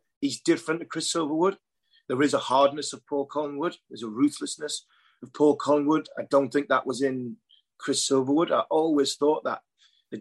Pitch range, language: 130-155 Hz, English